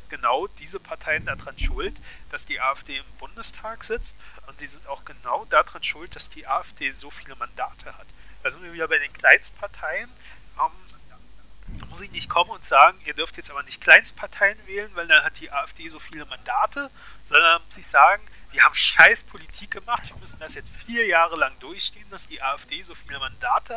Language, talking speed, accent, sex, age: German, 195 wpm, German, male, 40-59